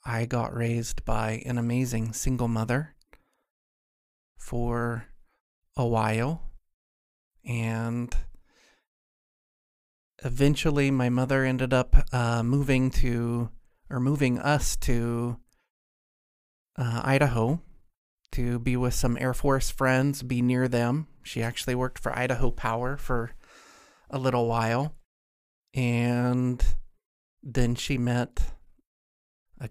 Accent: American